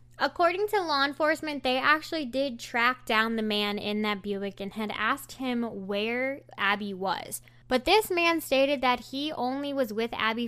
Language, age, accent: English, 10-29, American